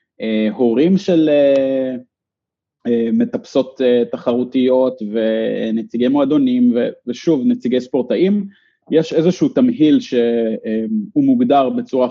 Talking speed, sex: 80 wpm, male